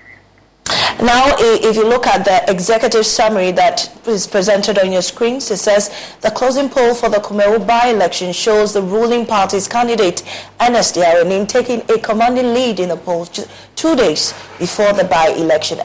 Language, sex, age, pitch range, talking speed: English, female, 30-49, 180-230 Hz, 160 wpm